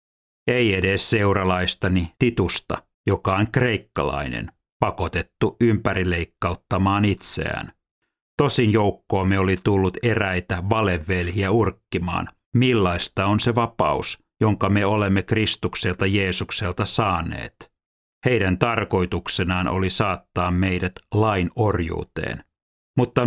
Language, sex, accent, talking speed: Finnish, male, native, 90 wpm